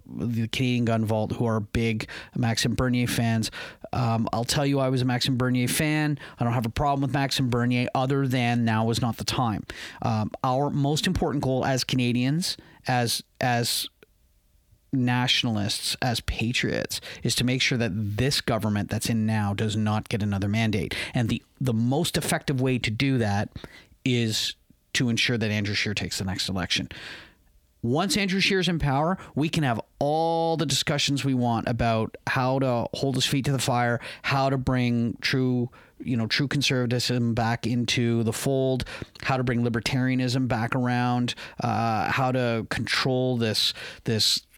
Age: 40-59